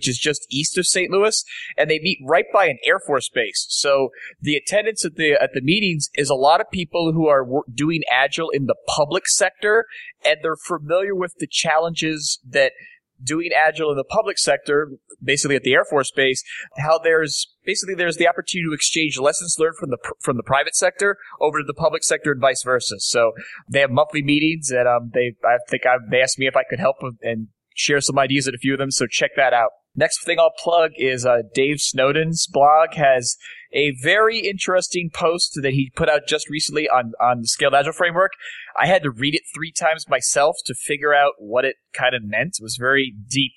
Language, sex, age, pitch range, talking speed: English, male, 30-49, 135-165 Hz, 215 wpm